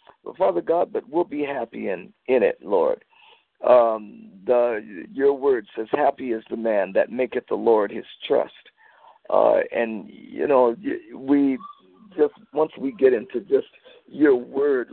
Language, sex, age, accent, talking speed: English, male, 50-69, American, 155 wpm